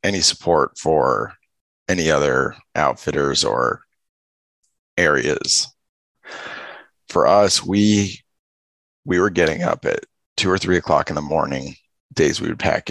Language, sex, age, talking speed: English, male, 30-49, 125 wpm